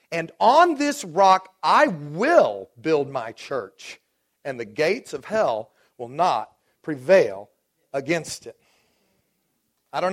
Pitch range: 165-235 Hz